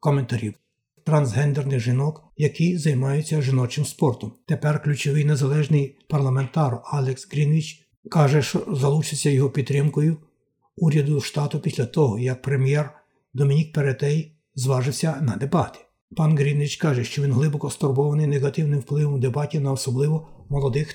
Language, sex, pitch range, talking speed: Ukrainian, male, 135-155 Hz, 120 wpm